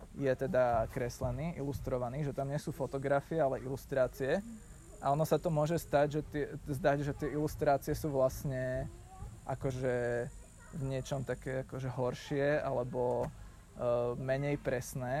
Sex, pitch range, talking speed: male, 130-155 Hz, 140 wpm